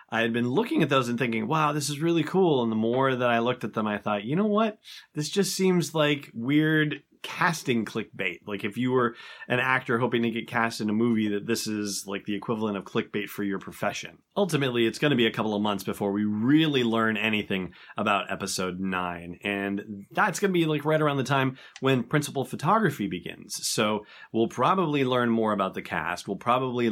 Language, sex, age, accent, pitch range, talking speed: English, male, 30-49, American, 105-135 Hz, 220 wpm